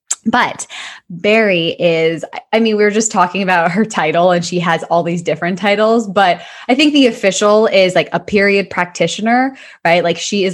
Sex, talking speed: female, 190 wpm